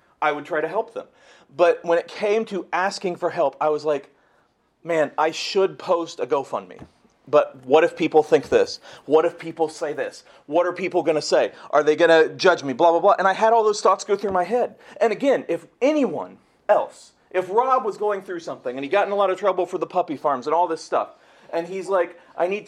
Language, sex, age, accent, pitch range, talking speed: English, male, 40-59, American, 170-230 Hz, 235 wpm